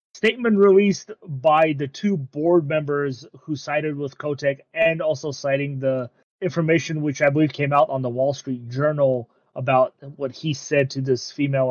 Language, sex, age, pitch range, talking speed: English, male, 30-49, 130-160 Hz, 170 wpm